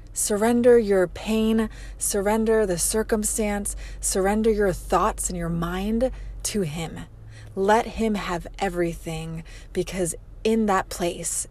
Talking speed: 115 wpm